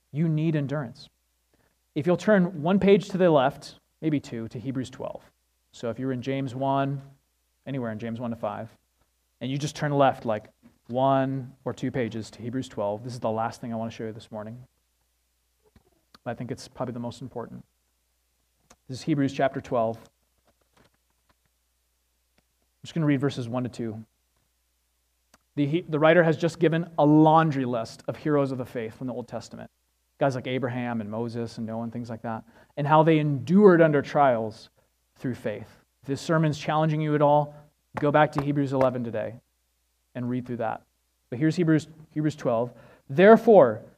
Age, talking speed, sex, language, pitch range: 30-49, 185 wpm, male, English, 115-155 Hz